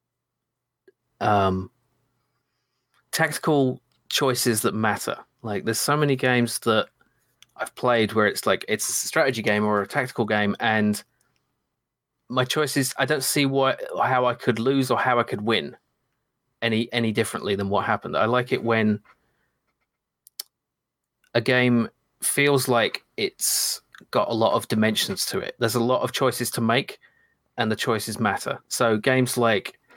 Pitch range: 110-130 Hz